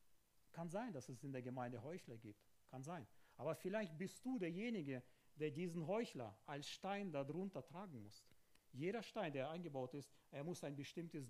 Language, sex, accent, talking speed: German, male, German, 175 wpm